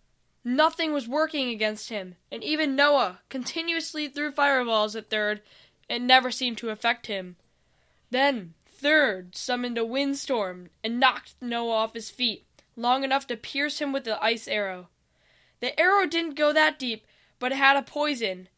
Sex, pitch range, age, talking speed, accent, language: female, 220-270 Hz, 10-29, 160 wpm, American, English